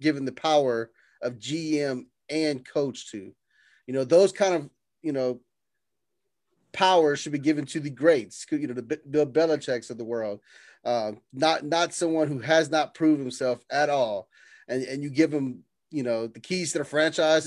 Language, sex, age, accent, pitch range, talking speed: English, male, 30-49, American, 130-160 Hz, 180 wpm